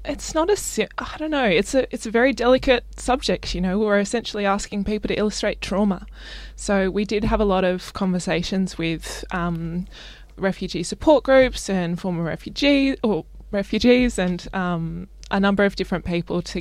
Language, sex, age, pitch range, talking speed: English, female, 20-39, 175-210 Hz, 175 wpm